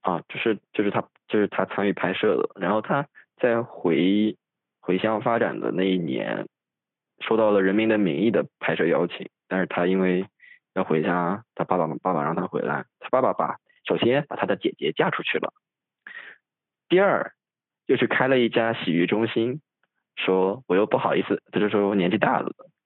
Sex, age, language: male, 20-39, Chinese